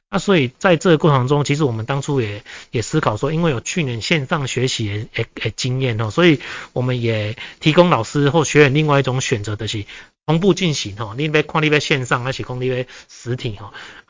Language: Chinese